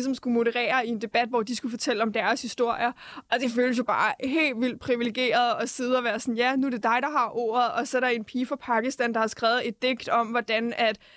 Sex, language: female, Danish